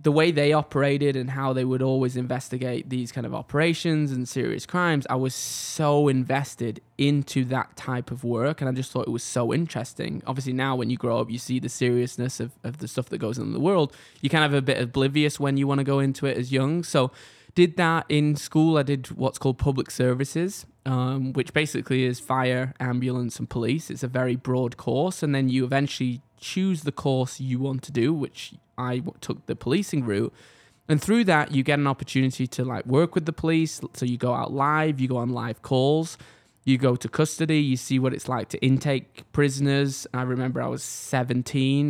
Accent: British